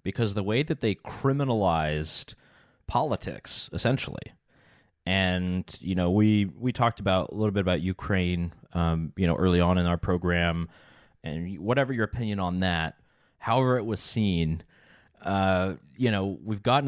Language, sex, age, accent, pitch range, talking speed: English, male, 20-39, American, 95-120 Hz, 155 wpm